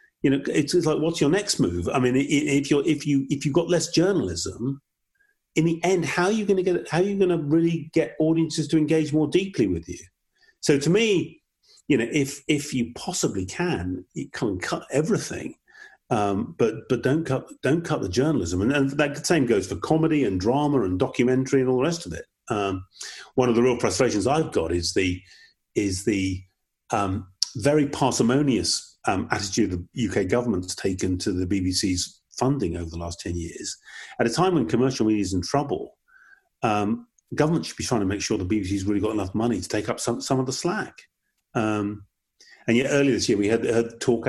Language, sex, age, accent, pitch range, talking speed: English, male, 40-59, British, 110-155 Hz, 210 wpm